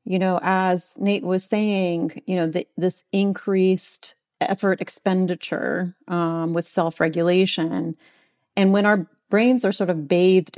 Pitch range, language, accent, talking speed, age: 165-195 Hz, English, American, 130 wpm, 40-59